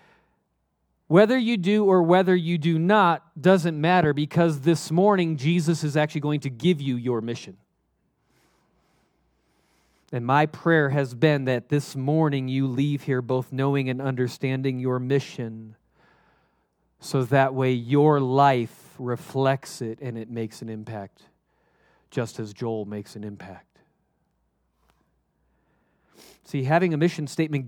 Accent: American